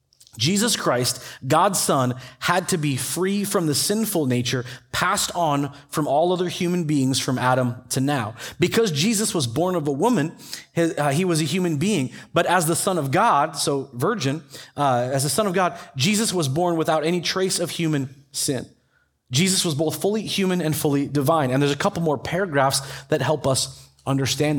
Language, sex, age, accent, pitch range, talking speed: English, male, 30-49, American, 140-185 Hz, 190 wpm